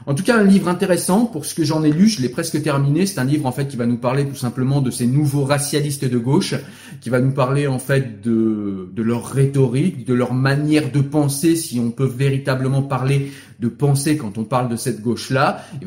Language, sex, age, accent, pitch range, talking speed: French, male, 30-49, French, 120-150 Hz, 235 wpm